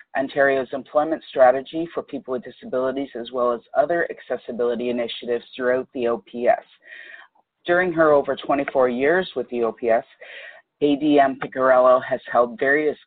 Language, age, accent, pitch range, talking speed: English, 40-59, American, 125-150 Hz, 135 wpm